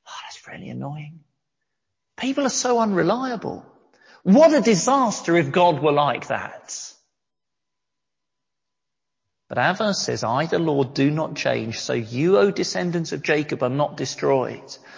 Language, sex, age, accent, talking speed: English, male, 40-59, British, 130 wpm